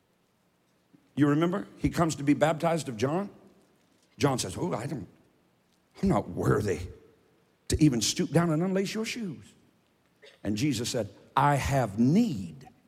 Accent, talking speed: American, 145 wpm